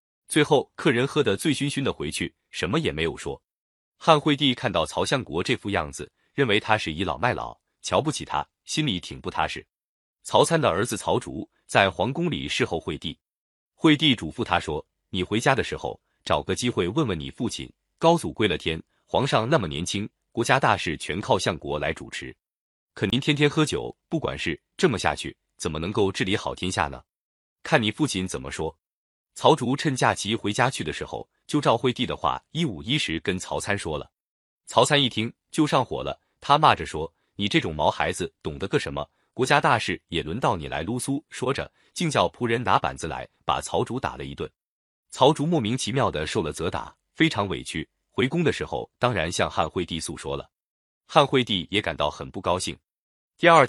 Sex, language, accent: male, Chinese, native